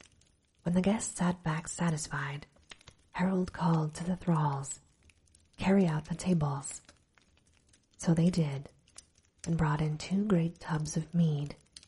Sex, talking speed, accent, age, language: female, 130 wpm, American, 30-49, English